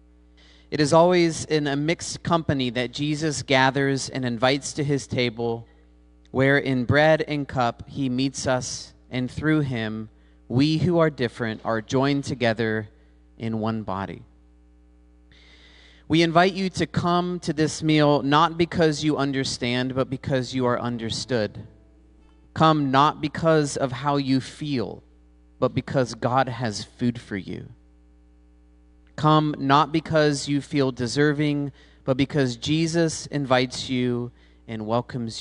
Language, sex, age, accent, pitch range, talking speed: English, male, 30-49, American, 85-145 Hz, 135 wpm